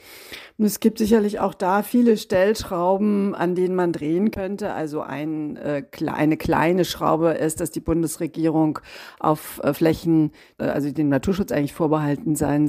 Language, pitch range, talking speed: German, 155-185 Hz, 130 wpm